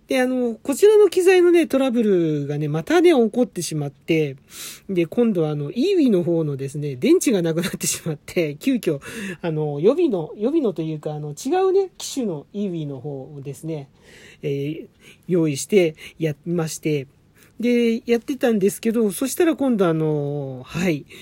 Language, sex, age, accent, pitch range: Japanese, male, 40-59, native, 150-220 Hz